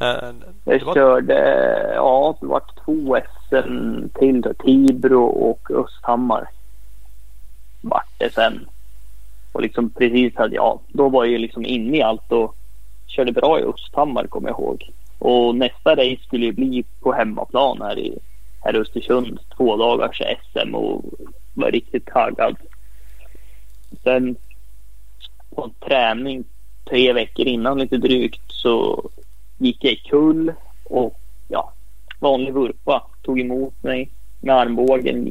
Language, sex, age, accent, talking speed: Swedish, male, 30-49, native, 130 wpm